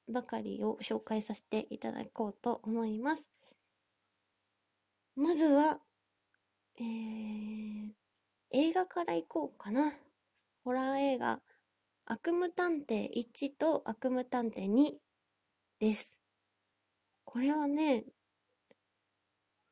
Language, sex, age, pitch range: Japanese, female, 20-39, 225-295 Hz